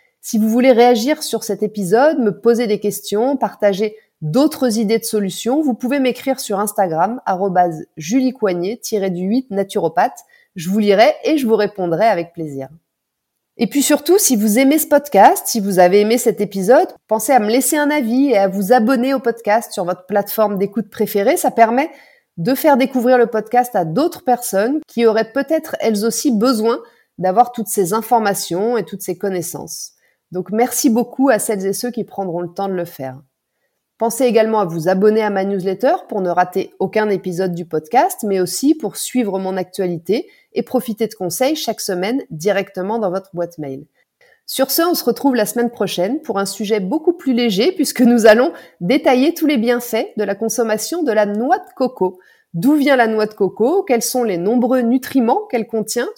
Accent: French